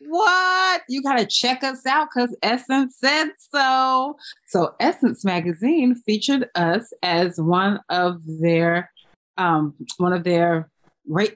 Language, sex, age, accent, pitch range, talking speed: English, female, 30-49, American, 170-215 Hz, 125 wpm